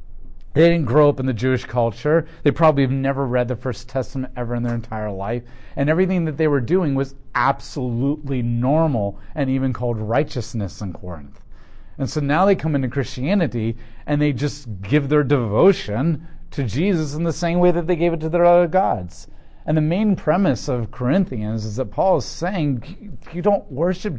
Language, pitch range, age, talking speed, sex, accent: English, 110-150 Hz, 40-59, 190 wpm, male, American